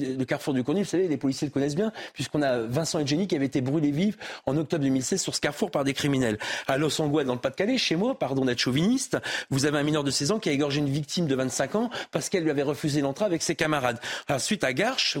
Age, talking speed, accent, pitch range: 40-59, 260 wpm, French, 135-165 Hz